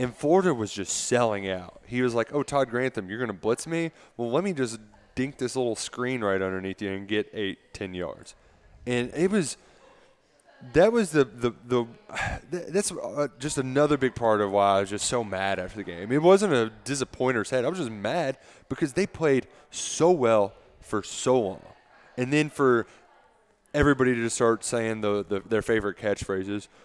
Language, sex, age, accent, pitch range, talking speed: English, male, 20-39, American, 100-140 Hz, 190 wpm